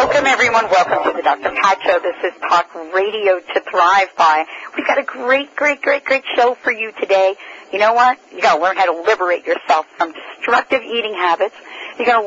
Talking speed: 205 wpm